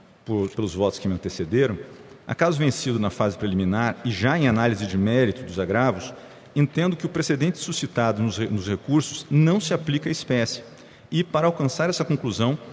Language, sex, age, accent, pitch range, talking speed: Portuguese, male, 50-69, Brazilian, 115-150 Hz, 170 wpm